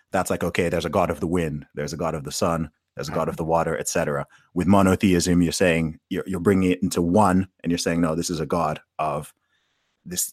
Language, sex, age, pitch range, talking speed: English, male, 30-49, 85-100 Hz, 250 wpm